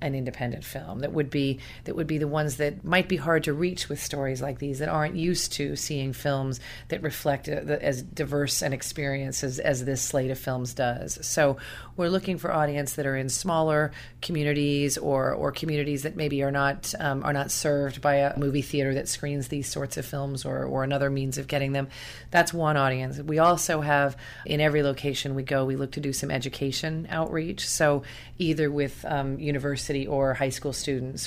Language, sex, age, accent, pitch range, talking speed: English, female, 40-59, American, 130-150 Hz, 205 wpm